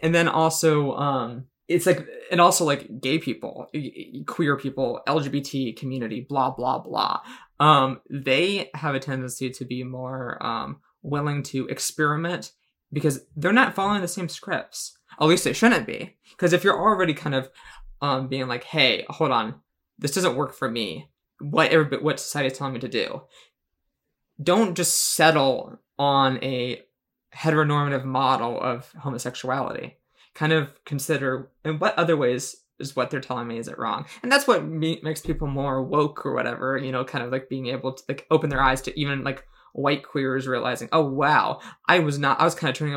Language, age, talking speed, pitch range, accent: English, 20-39, 180 wpm, 130-160 Hz, American